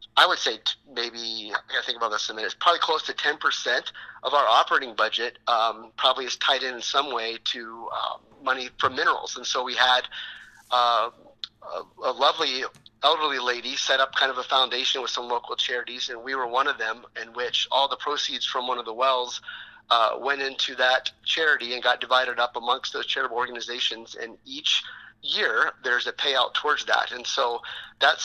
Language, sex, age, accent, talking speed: English, male, 30-49, American, 200 wpm